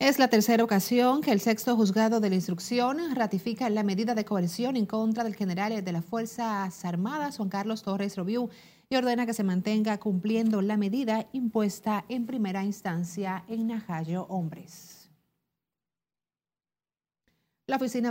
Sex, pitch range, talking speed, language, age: female, 190-225 Hz, 150 wpm, Spanish, 40-59